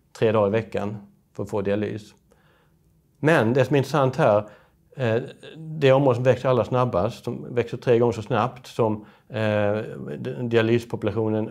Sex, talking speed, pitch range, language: male, 145 wpm, 100-125 Hz, Swedish